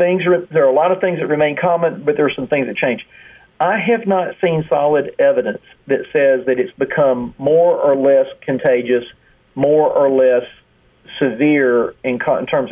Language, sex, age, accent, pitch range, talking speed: English, male, 40-59, American, 135-185 Hz, 195 wpm